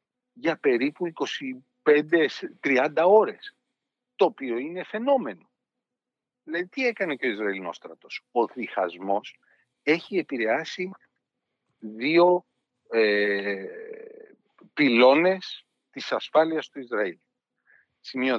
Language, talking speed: Greek, 85 wpm